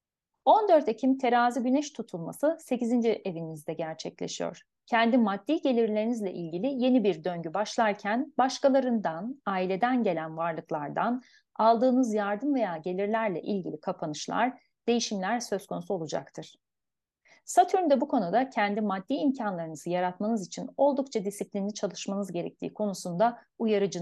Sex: female